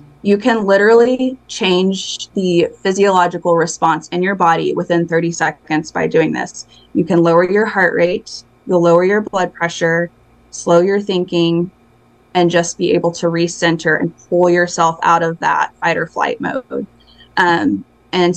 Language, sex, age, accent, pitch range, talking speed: English, female, 20-39, American, 165-185 Hz, 155 wpm